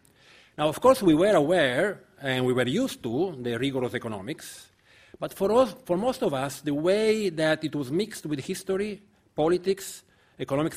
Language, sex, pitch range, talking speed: English, male, 120-165 Hz, 175 wpm